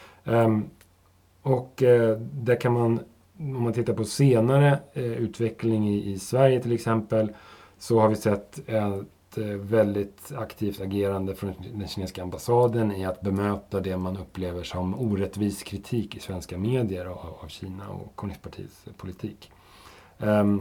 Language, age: English, 30-49